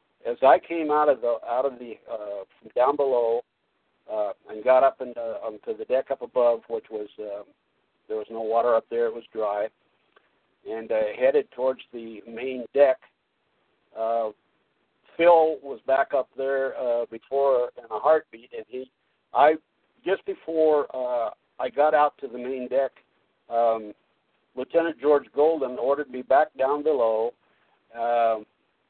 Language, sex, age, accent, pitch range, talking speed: English, male, 60-79, American, 120-170 Hz, 160 wpm